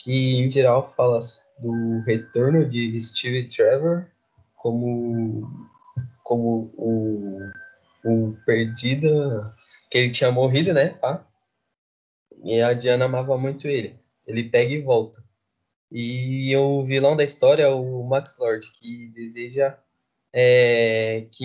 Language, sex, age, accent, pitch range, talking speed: Portuguese, male, 10-29, Brazilian, 115-140 Hz, 120 wpm